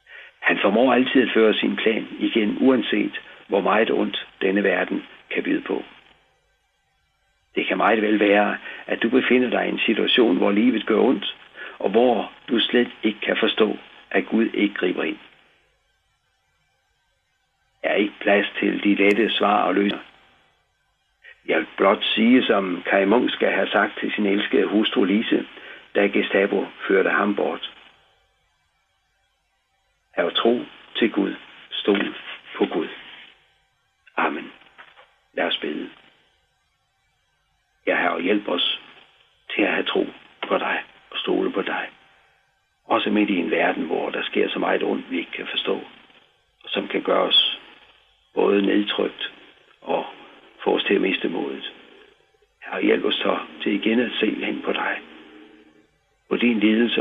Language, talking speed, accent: Danish, 150 wpm, native